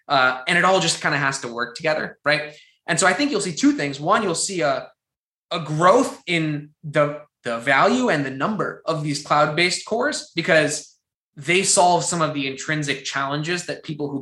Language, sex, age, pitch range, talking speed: English, male, 20-39, 140-175 Hz, 205 wpm